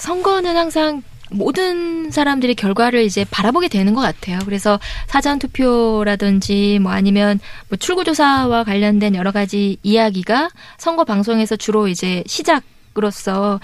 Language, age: Korean, 20-39